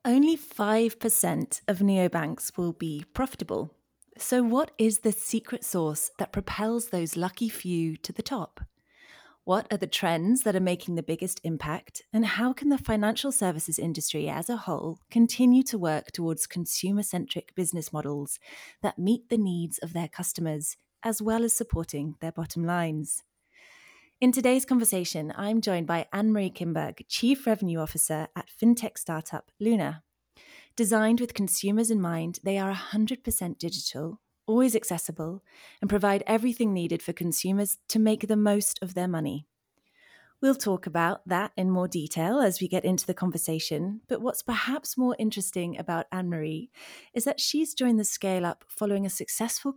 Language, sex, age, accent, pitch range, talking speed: English, female, 30-49, British, 170-225 Hz, 160 wpm